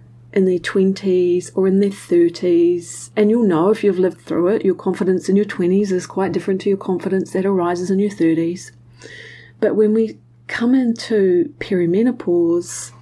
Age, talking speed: 40-59, 170 wpm